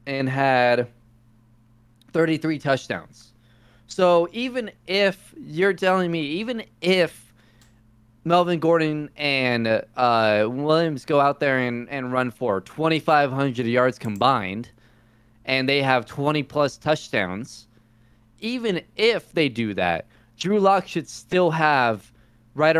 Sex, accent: male, American